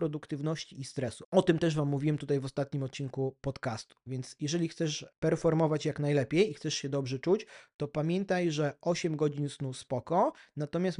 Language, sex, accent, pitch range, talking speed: Polish, male, native, 140-175 Hz, 175 wpm